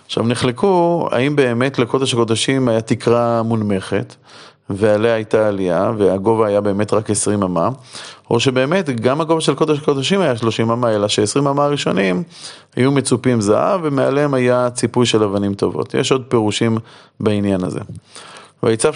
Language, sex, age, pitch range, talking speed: Hebrew, male, 30-49, 105-130 Hz, 150 wpm